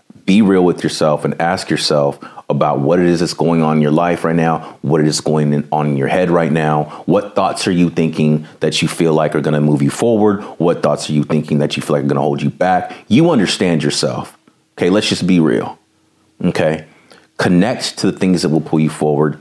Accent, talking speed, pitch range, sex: American, 240 wpm, 75-90 Hz, male